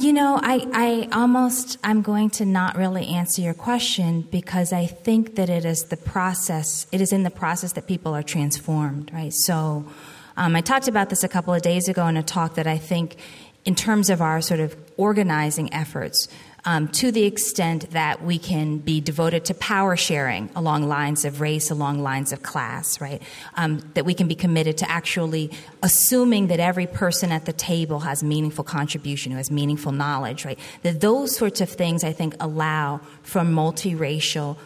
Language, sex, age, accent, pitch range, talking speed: English, female, 30-49, American, 155-190 Hz, 190 wpm